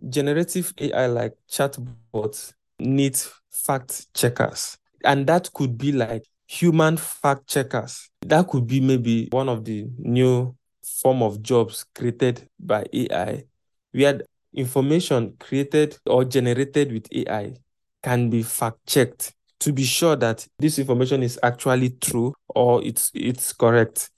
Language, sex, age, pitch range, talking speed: English, male, 20-39, 120-140 Hz, 135 wpm